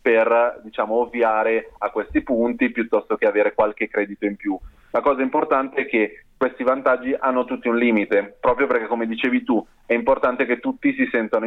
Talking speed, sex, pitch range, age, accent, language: 180 wpm, male, 110-165 Hz, 30-49, native, Italian